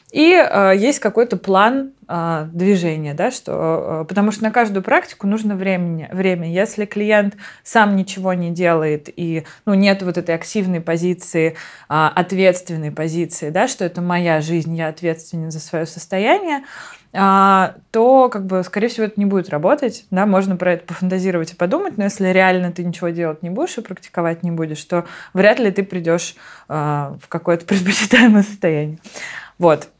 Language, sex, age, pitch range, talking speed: Russian, female, 20-39, 165-205 Hz, 170 wpm